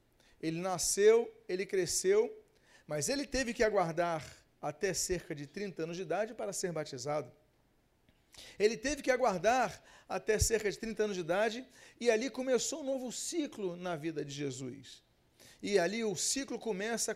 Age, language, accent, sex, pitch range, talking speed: 40-59, Portuguese, Brazilian, male, 185-235 Hz, 155 wpm